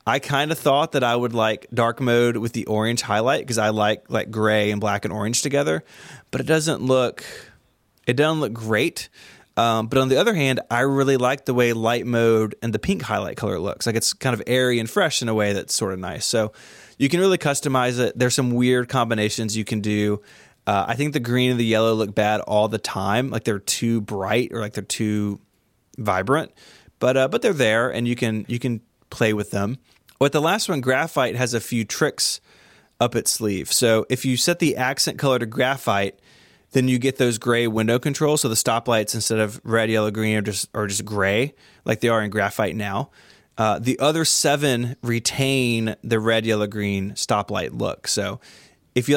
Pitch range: 110-130 Hz